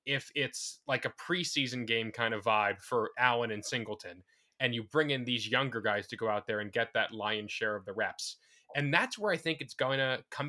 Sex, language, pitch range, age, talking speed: male, English, 115-145 Hz, 10-29, 235 wpm